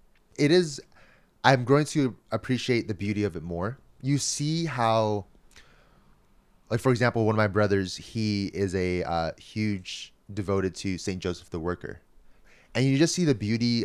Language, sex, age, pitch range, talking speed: English, male, 20-39, 90-115 Hz, 165 wpm